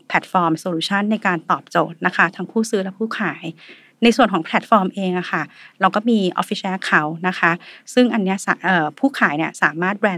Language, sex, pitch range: Thai, female, 180-225 Hz